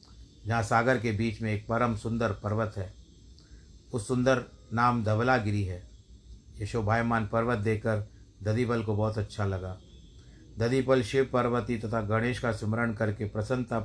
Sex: male